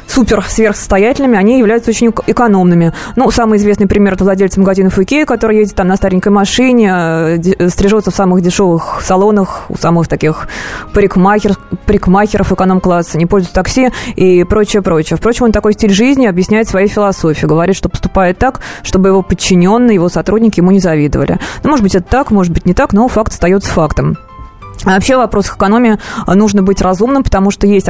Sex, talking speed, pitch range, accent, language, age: female, 170 wpm, 180-215 Hz, native, Russian, 20-39